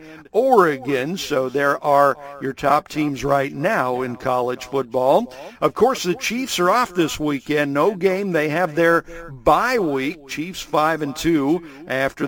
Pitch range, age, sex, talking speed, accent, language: 145-225 Hz, 50-69, male, 145 wpm, American, English